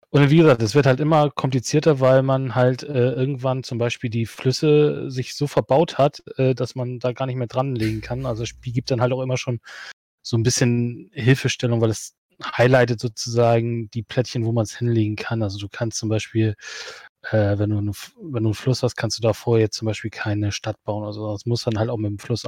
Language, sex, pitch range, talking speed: German, male, 115-135 Hz, 225 wpm